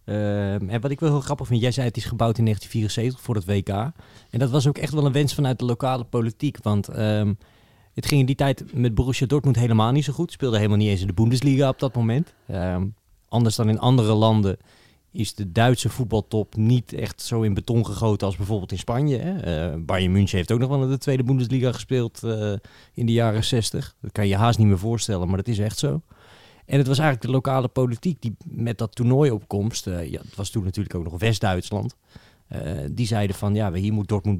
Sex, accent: male, Dutch